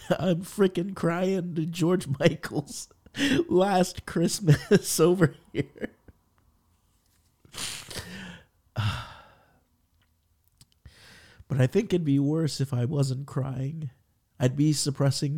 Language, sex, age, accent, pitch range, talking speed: English, male, 50-69, American, 105-140 Hz, 90 wpm